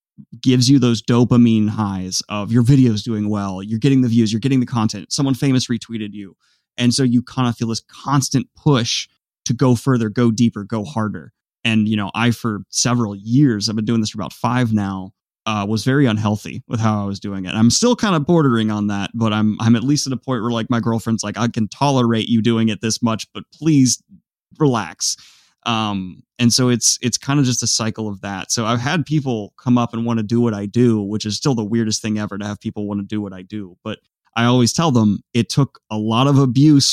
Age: 30-49